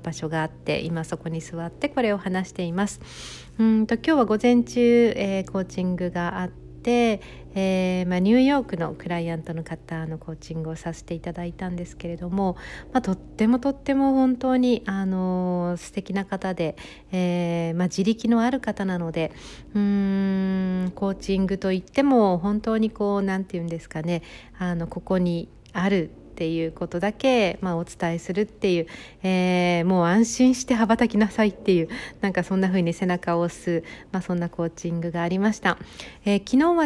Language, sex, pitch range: Japanese, female, 175-215 Hz